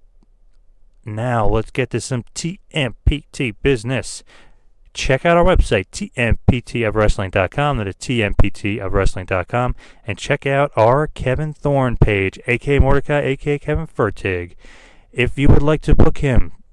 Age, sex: 30-49, male